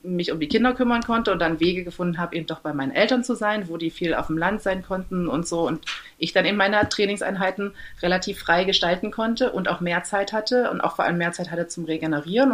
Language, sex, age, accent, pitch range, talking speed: German, female, 30-49, German, 170-220 Hz, 250 wpm